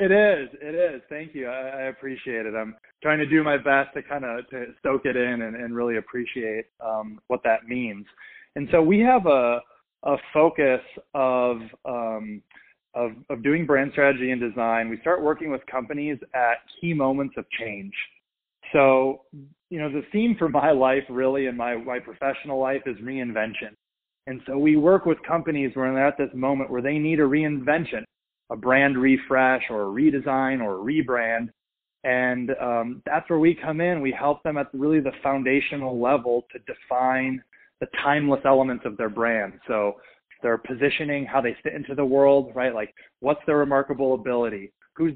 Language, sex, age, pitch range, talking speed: English, male, 20-39, 120-145 Hz, 180 wpm